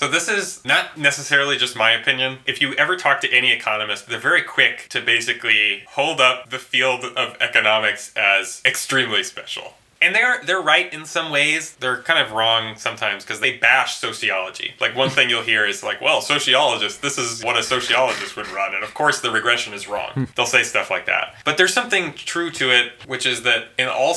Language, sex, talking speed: English, male, 210 wpm